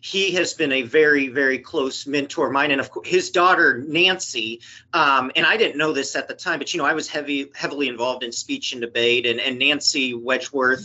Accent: American